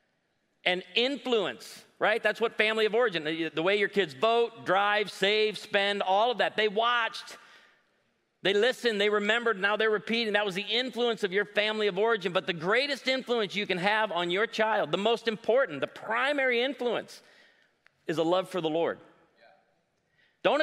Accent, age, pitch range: American, 40-59, 195-245 Hz